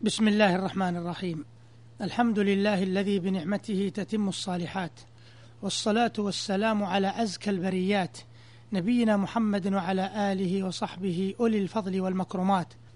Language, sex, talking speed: Arabic, male, 105 wpm